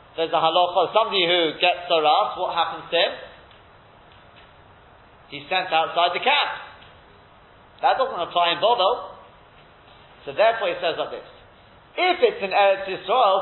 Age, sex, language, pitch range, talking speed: 40-59, male, English, 175-260 Hz, 145 wpm